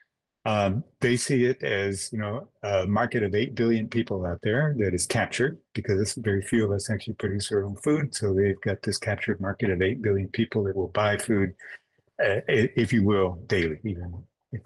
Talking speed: 200 wpm